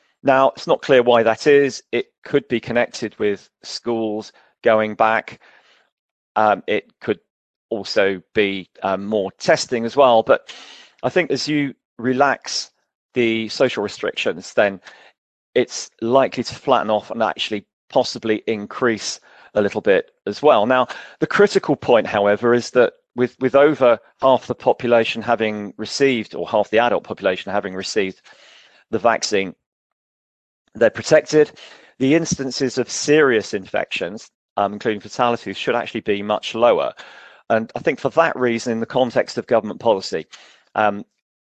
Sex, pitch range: male, 105-130 Hz